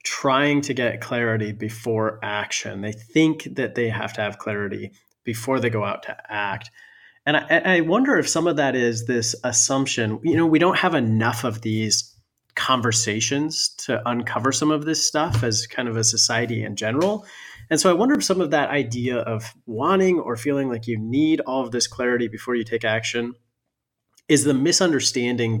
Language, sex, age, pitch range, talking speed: English, male, 30-49, 110-135 Hz, 190 wpm